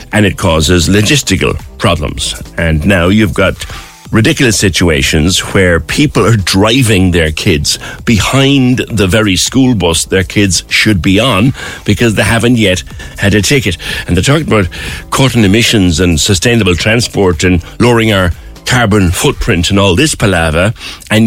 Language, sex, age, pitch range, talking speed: English, male, 60-79, 90-120 Hz, 150 wpm